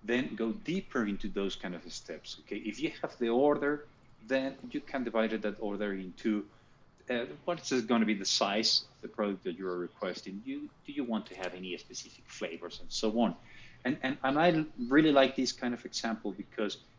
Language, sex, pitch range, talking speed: German, male, 100-130 Hz, 210 wpm